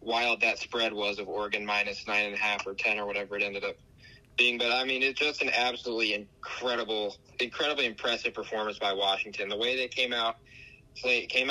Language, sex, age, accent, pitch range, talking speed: English, male, 20-39, American, 110-125 Hz, 200 wpm